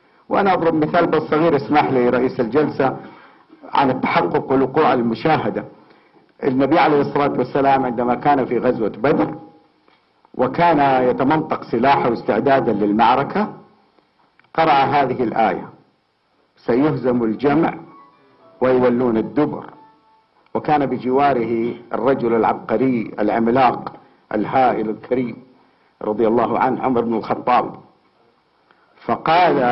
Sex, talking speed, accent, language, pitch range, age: male, 95 wpm, Lebanese, English, 115-145 Hz, 50-69